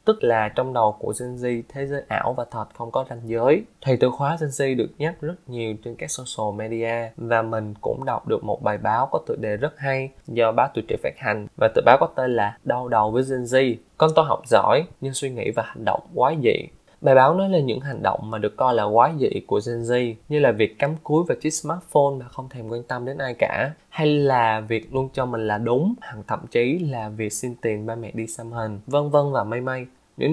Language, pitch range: Vietnamese, 115-145 Hz